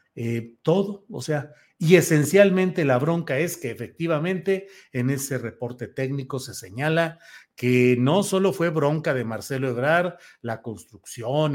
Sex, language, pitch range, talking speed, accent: male, Spanish, 120-170 Hz, 140 wpm, Mexican